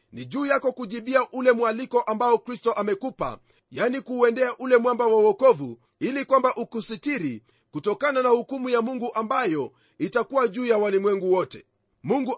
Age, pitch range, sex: 40-59, 215-255 Hz, male